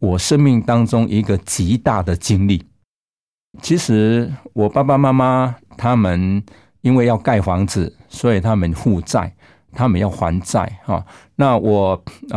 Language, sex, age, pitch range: Chinese, male, 60-79, 95-130 Hz